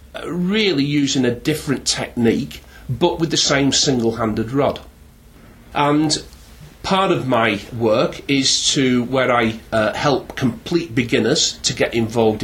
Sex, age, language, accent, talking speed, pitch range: male, 40-59, English, British, 130 wpm, 115-135 Hz